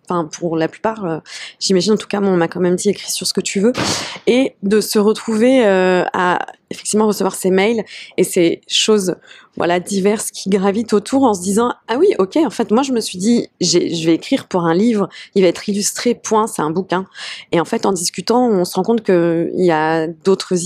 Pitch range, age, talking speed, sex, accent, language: 180-225 Hz, 20-39, 235 wpm, female, French, French